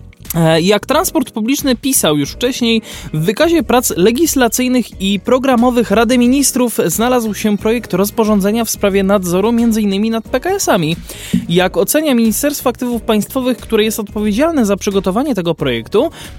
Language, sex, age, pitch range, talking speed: Polish, male, 20-39, 190-255 Hz, 135 wpm